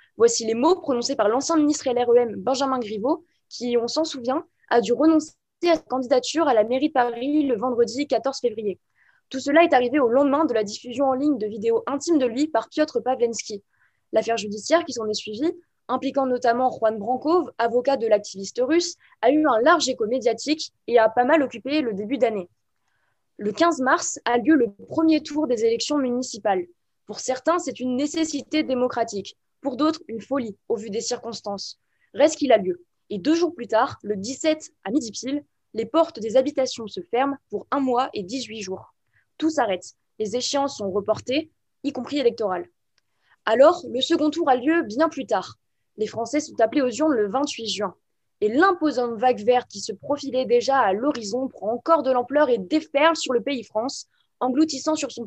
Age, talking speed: 20-39, 190 wpm